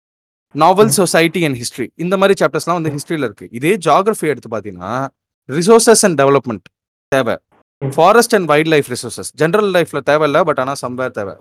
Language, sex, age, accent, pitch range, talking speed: Tamil, male, 20-39, native, 125-175 Hz, 155 wpm